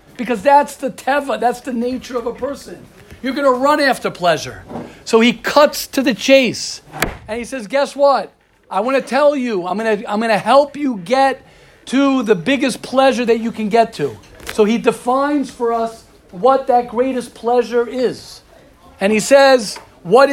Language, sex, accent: English, male, American